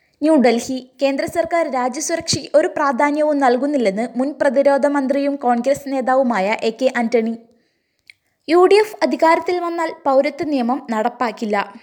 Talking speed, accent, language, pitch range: 85 wpm, native, Malayalam, 250-315 Hz